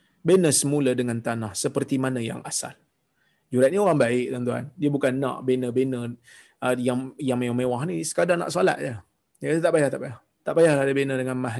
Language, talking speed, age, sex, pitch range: Malayalam, 180 wpm, 30-49, male, 125-185 Hz